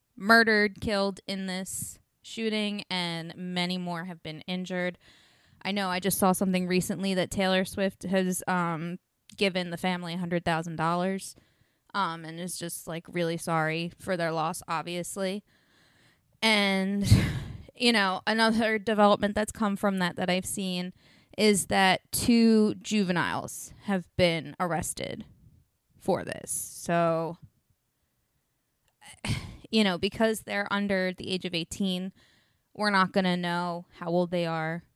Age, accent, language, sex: 20-39, American, English, female